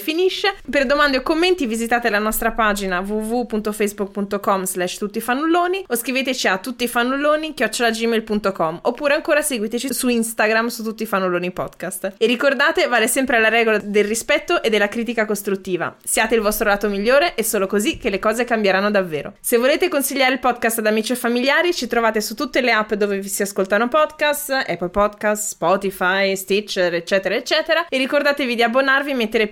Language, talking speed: Italian, 170 wpm